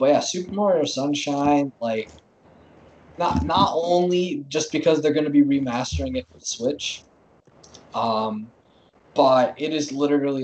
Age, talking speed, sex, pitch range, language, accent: 20-39, 140 wpm, male, 115-145 Hz, English, American